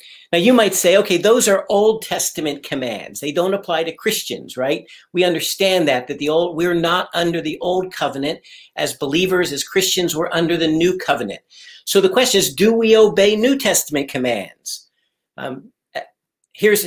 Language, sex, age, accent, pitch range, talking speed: English, male, 50-69, American, 165-210 Hz, 175 wpm